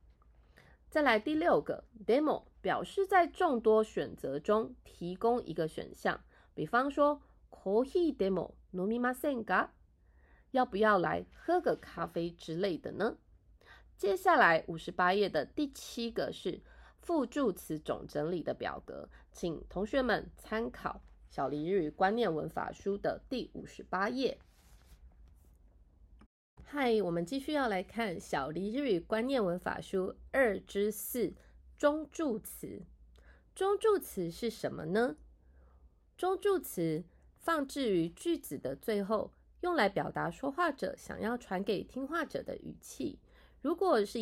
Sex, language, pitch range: female, Japanese, 180-300 Hz